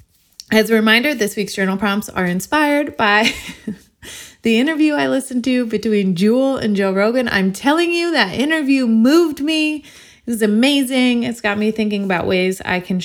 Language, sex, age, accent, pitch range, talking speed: English, female, 20-39, American, 180-235 Hz, 175 wpm